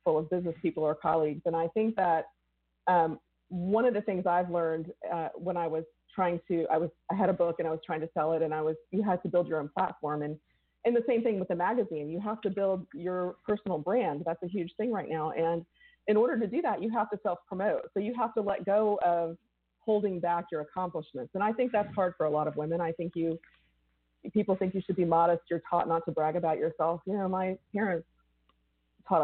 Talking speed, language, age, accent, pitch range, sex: 245 wpm, English, 40-59, American, 165-205 Hz, female